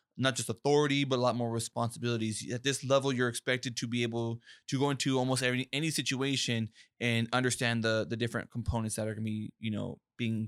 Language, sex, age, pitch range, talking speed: English, male, 20-39, 110-125 Hz, 210 wpm